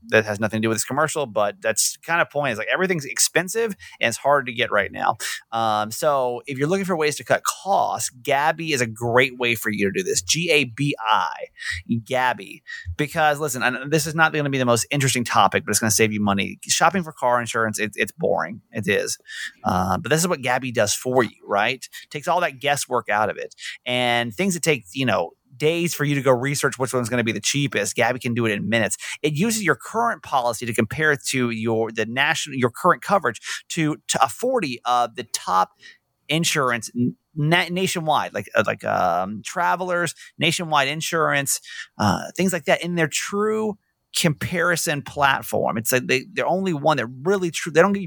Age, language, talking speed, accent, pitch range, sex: 30-49, English, 210 wpm, American, 115-160 Hz, male